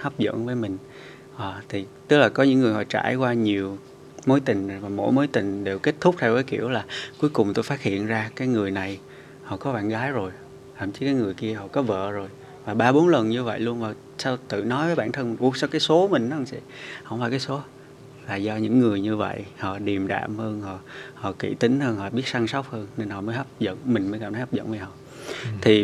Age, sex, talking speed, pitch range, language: 20-39, male, 255 wpm, 105-130 Hz, Vietnamese